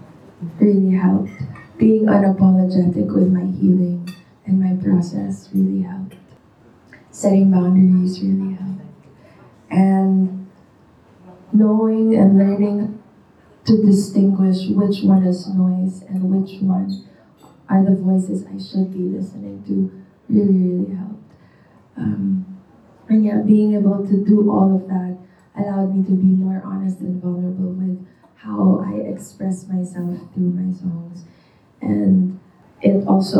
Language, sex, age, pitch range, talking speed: Filipino, female, 20-39, 180-195 Hz, 125 wpm